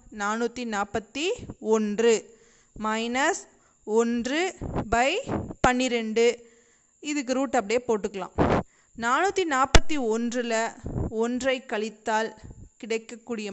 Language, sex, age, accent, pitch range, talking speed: Tamil, female, 20-39, native, 225-270 Hz, 65 wpm